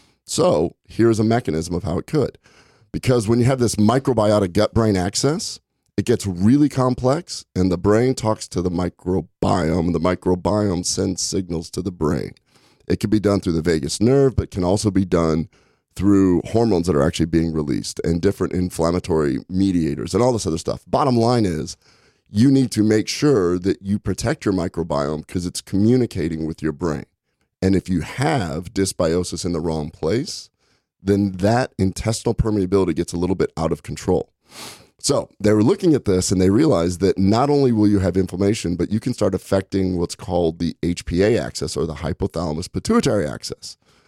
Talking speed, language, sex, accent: 185 wpm, English, male, American